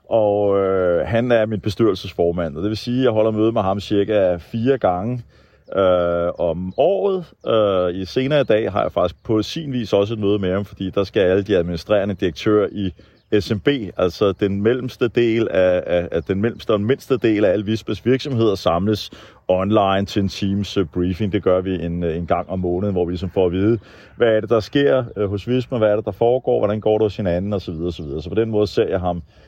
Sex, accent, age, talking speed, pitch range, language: male, native, 30-49, 230 wpm, 95-115 Hz, Danish